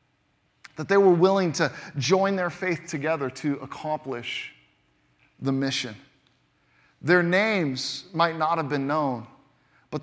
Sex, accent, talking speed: male, American, 125 wpm